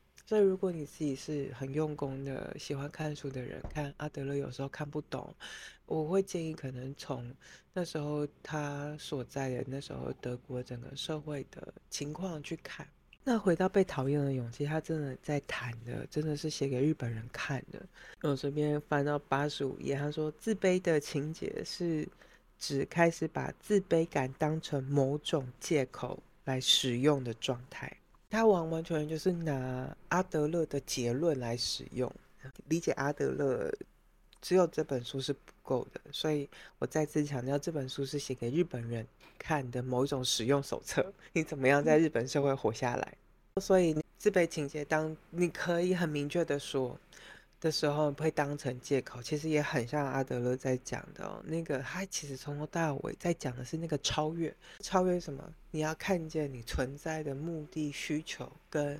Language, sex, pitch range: Chinese, female, 135-160 Hz